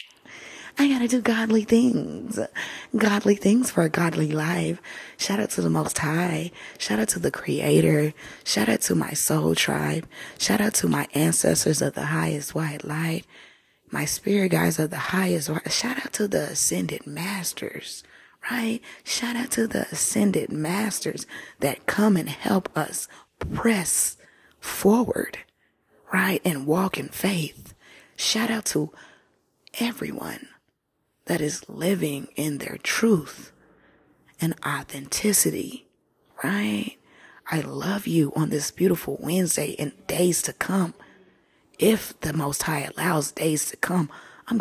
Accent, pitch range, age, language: American, 150-205 Hz, 20-39, English